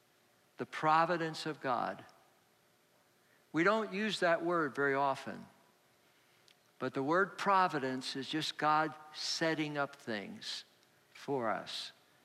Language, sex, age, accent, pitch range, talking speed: English, male, 60-79, American, 135-170 Hz, 115 wpm